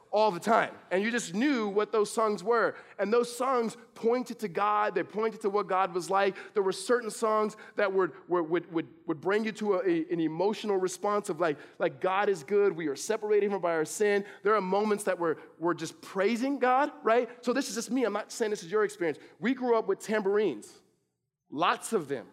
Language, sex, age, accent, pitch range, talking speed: English, male, 20-39, American, 195-245 Hz, 230 wpm